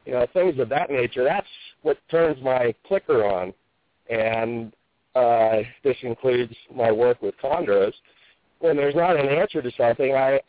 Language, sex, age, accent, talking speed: English, male, 50-69, American, 160 wpm